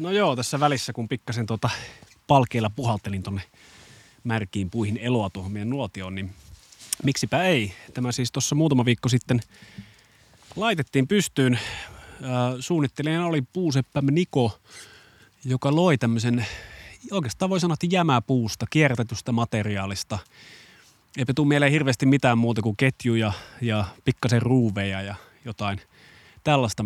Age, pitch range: 30-49, 100-130 Hz